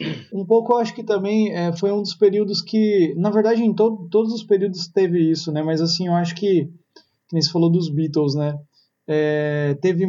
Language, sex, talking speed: Portuguese, male, 210 wpm